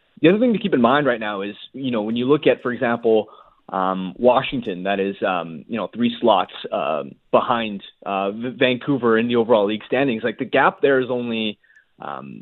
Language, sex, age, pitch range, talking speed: English, male, 20-39, 115-145 Hz, 215 wpm